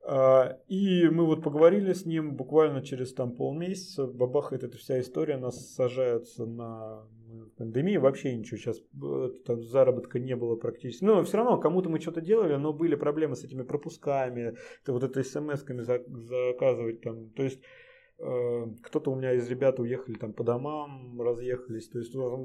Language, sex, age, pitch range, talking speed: Russian, male, 20-39, 120-155 Hz, 150 wpm